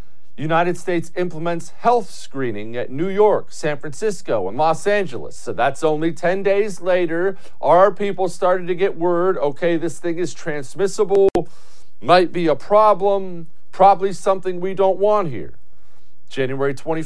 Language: English